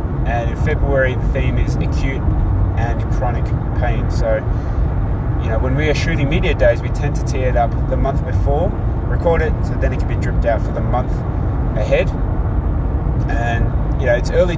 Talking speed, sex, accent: 190 wpm, male, Australian